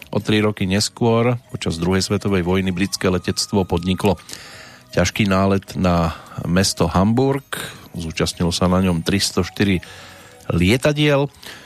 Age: 40-59